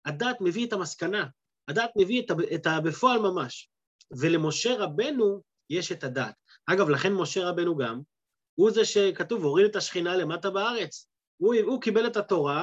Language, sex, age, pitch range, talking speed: Hebrew, male, 30-49, 155-230 Hz, 165 wpm